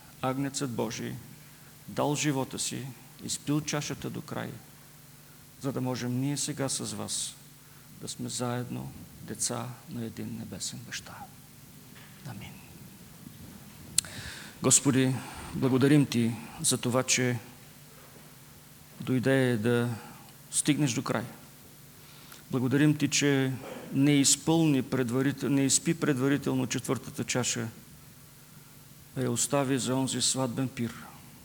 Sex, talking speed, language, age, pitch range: male, 100 wpm, English, 50-69, 120-140 Hz